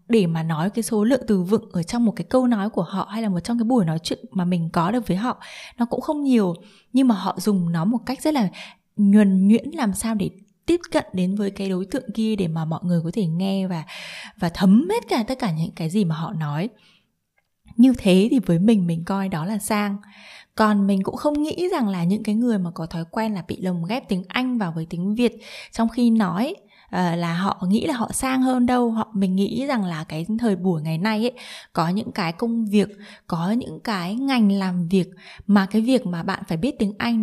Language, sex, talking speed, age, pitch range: Vietnamese, female, 245 wpm, 20-39, 180-235 Hz